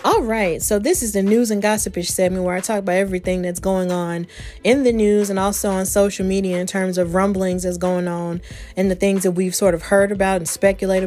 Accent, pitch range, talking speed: American, 175-200 Hz, 240 wpm